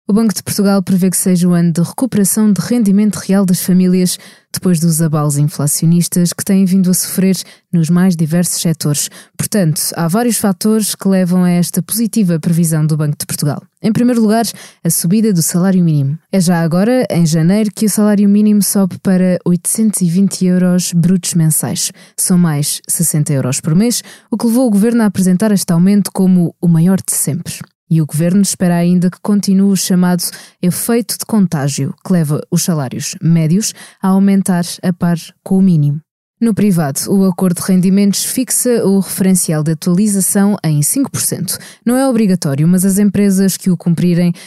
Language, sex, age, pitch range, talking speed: Portuguese, female, 20-39, 170-200 Hz, 180 wpm